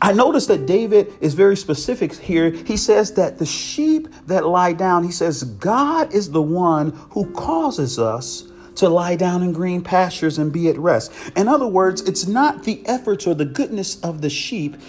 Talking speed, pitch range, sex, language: 195 wpm, 120-180 Hz, male, English